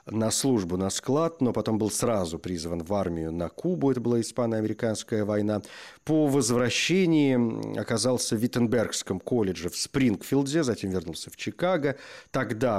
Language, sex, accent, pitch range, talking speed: Russian, male, native, 95-125 Hz, 140 wpm